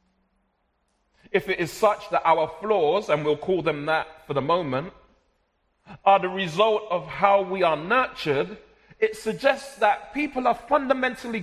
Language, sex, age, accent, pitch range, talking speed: English, male, 40-59, British, 175-230 Hz, 150 wpm